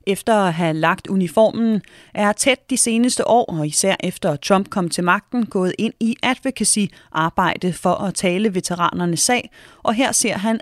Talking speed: 175 wpm